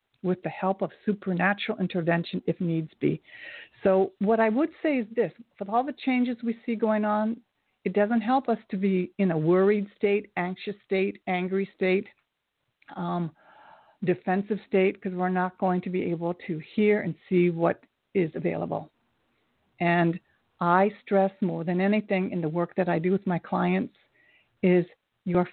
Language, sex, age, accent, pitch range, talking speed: English, female, 60-79, American, 180-230 Hz, 170 wpm